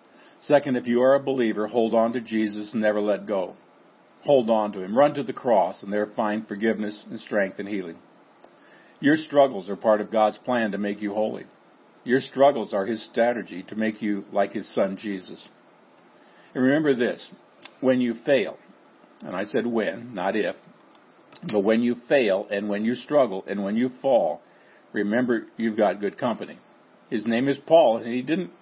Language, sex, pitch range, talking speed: English, male, 105-130 Hz, 185 wpm